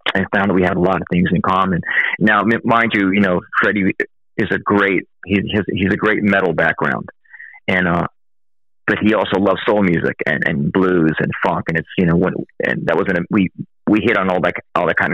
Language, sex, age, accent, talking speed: English, male, 40-59, American, 220 wpm